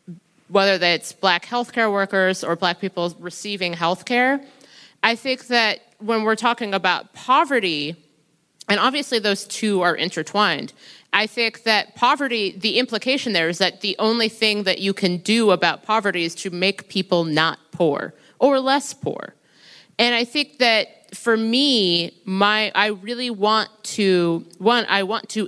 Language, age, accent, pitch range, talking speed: English, 30-49, American, 180-225 Hz, 160 wpm